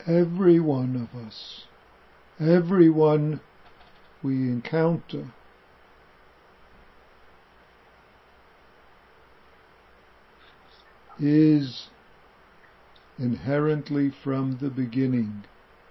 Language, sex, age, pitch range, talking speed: English, male, 60-79, 110-135 Hz, 50 wpm